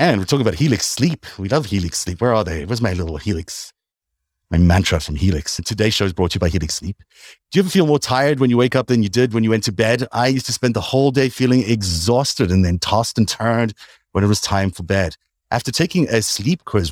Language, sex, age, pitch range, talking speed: English, male, 30-49, 95-120 Hz, 260 wpm